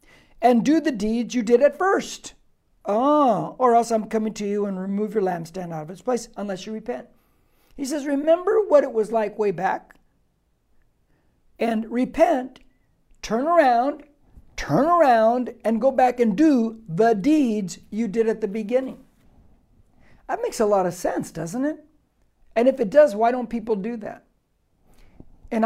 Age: 60-79